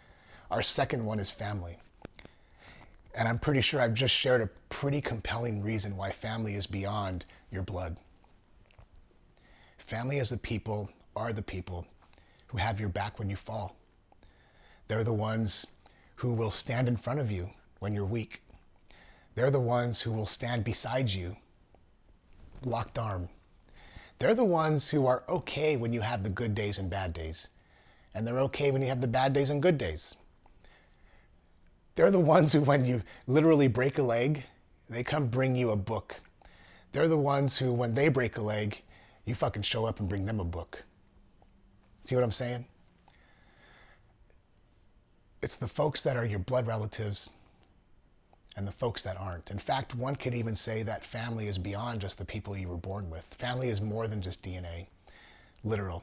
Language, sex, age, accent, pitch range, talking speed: English, male, 30-49, American, 95-120 Hz, 170 wpm